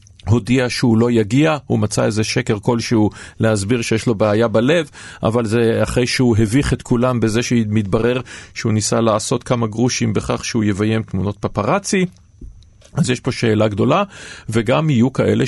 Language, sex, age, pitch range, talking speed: Hebrew, male, 40-59, 110-135 Hz, 165 wpm